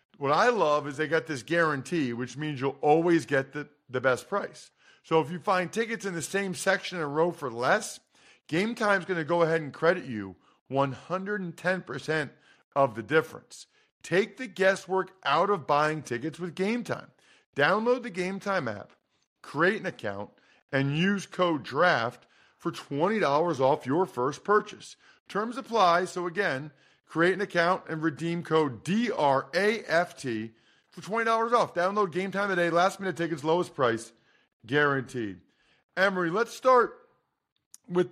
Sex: male